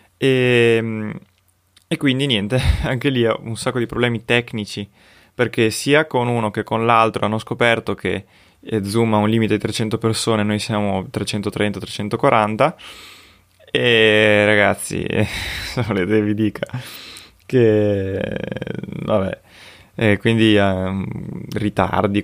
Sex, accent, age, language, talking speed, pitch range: male, native, 20-39, Italian, 120 wpm, 100-120 Hz